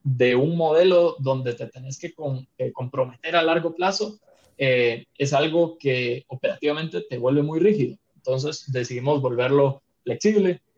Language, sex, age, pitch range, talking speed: Spanish, male, 20-39, 130-170 Hz, 145 wpm